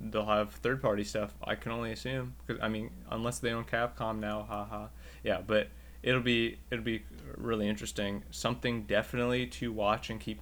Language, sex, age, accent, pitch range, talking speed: English, male, 20-39, American, 100-120 Hz, 180 wpm